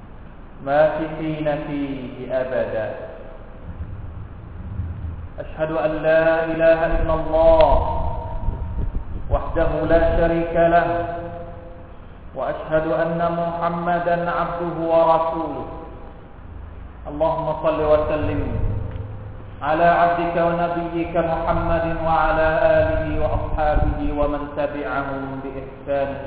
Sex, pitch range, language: male, 100-165 Hz, Thai